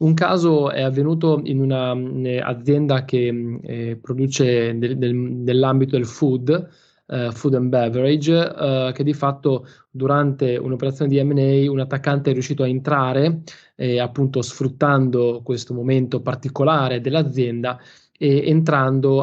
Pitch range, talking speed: 130-150 Hz, 130 wpm